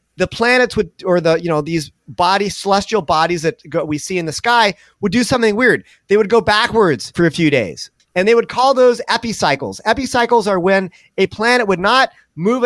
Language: English